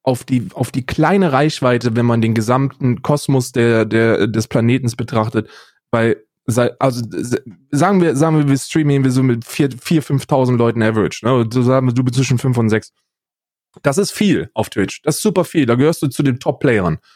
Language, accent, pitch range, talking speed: German, German, 125-170 Hz, 190 wpm